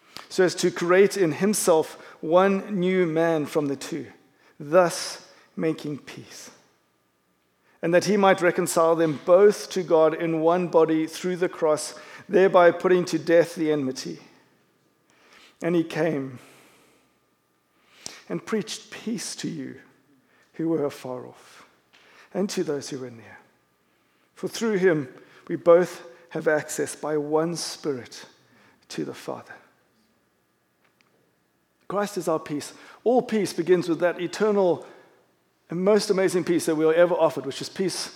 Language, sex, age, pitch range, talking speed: English, male, 50-69, 140-180 Hz, 140 wpm